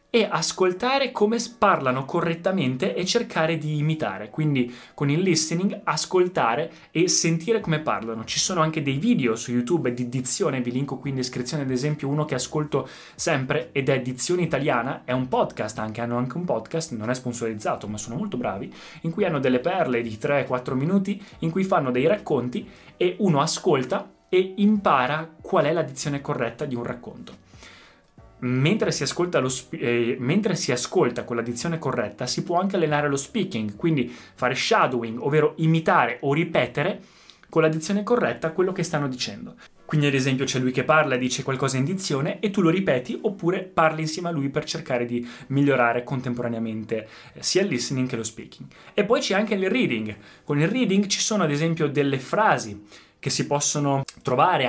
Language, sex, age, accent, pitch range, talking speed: Italian, male, 20-39, native, 125-170 Hz, 185 wpm